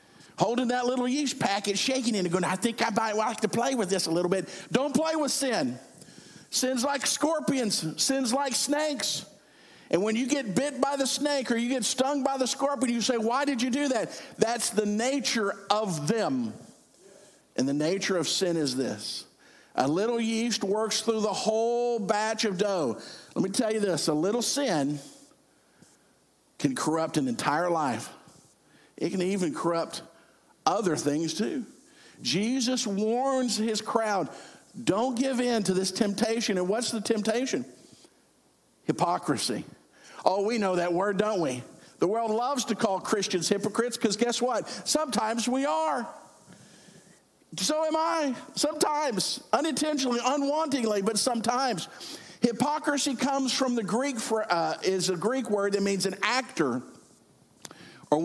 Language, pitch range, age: English, 200-265 Hz, 50-69